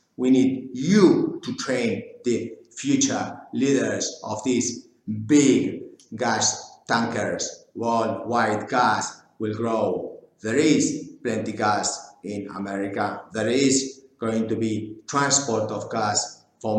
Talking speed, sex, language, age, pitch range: 115 wpm, male, English, 50-69, 110-135 Hz